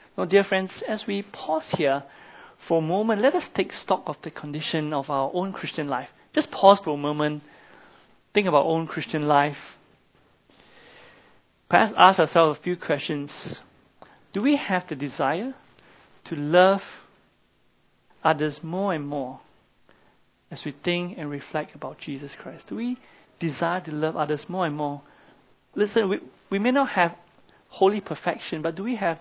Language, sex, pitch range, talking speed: English, male, 150-190 Hz, 160 wpm